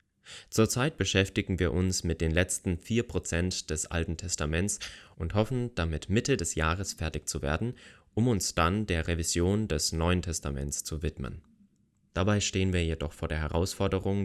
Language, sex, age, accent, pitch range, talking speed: German, male, 30-49, German, 80-100 Hz, 155 wpm